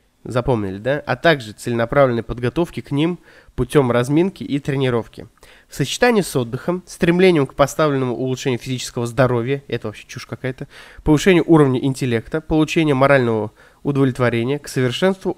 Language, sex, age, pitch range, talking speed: Russian, male, 20-39, 125-165 Hz, 135 wpm